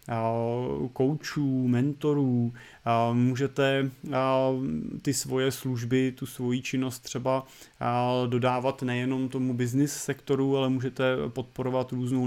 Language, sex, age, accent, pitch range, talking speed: Czech, male, 30-49, native, 125-145 Hz, 95 wpm